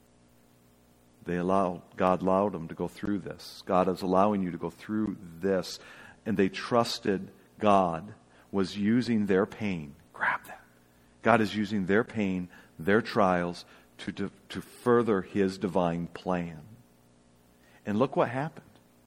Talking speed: 140 wpm